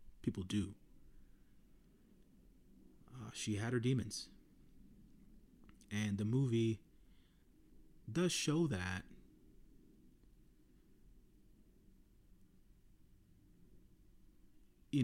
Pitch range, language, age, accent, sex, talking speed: 90-110 Hz, English, 30-49, American, male, 55 wpm